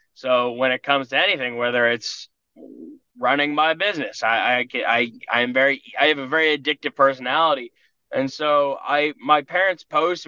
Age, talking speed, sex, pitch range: 10-29, 170 wpm, male, 120-145 Hz